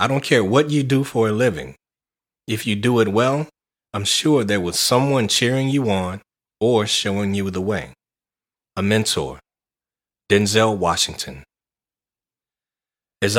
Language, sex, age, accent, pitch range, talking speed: English, male, 30-49, American, 100-125 Hz, 145 wpm